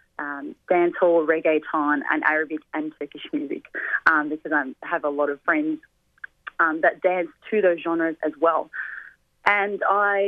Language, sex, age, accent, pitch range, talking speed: English, female, 20-39, Australian, 160-210 Hz, 150 wpm